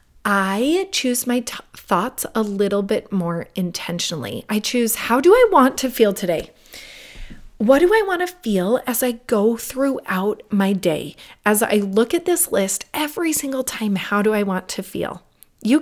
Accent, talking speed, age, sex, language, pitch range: American, 175 wpm, 30-49, female, English, 195-245 Hz